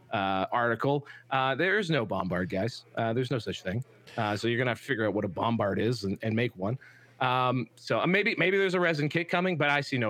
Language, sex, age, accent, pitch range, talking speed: English, male, 30-49, American, 120-155 Hz, 250 wpm